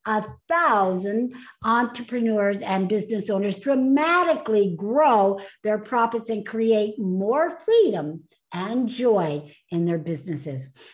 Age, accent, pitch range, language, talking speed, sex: 60-79, American, 200-300 Hz, English, 105 wpm, female